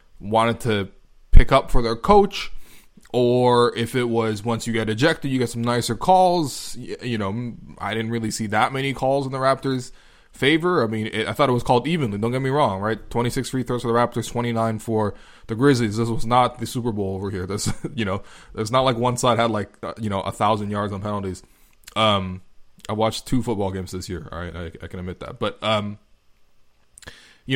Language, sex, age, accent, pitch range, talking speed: English, male, 20-39, American, 105-135 Hz, 215 wpm